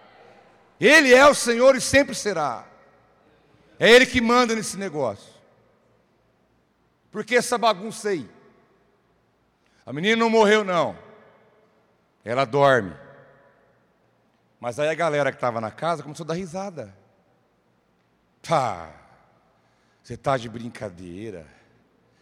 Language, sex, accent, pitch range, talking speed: Portuguese, male, Brazilian, 135-210 Hz, 120 wpm